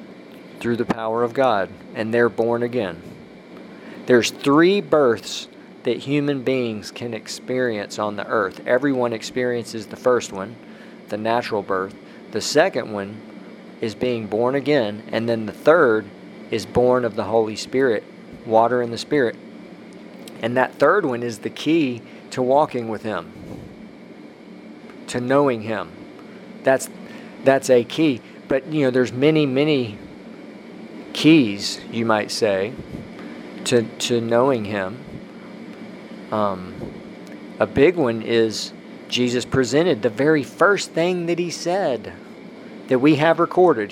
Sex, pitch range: male, 110-135 Hz